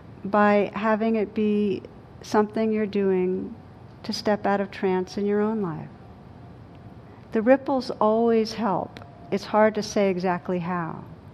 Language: English